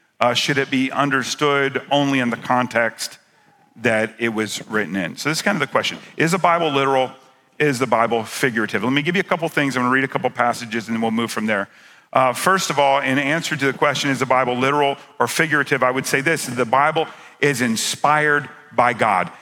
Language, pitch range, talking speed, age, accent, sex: English, 130-165 Hz, 225 wpm, 50-69, American, male